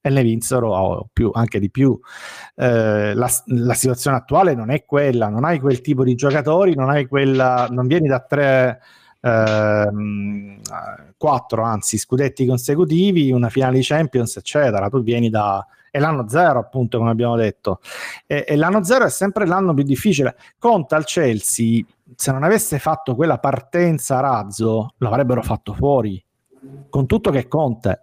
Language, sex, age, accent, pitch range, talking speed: Italian, male, 50-69, native, 115-150 Hz, 160 wpm